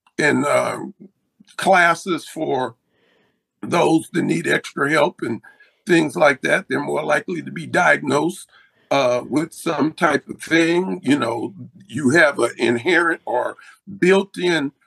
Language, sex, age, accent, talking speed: English, male, 50-69, American, 135 wpm